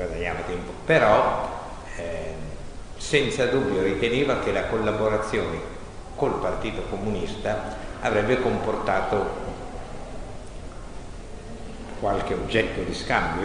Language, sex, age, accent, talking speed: Italian, male, 60-79, native, 80 wpm